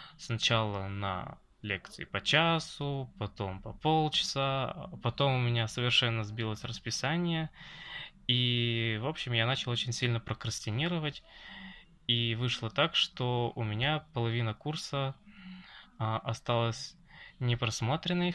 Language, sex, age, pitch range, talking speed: Russian, male, 20-39, 115-140 Hz, 105 wpm